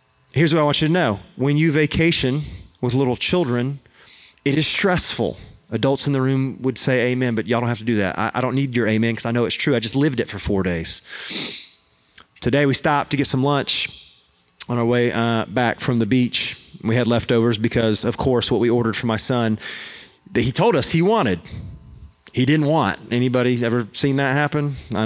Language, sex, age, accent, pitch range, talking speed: English, male, 30-49, American, 110-145 Hz, 215 wpm